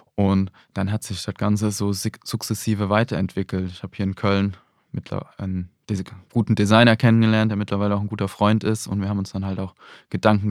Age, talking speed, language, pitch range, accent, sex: 20-39, 205 wpm, German, 95-110 Hz, German, male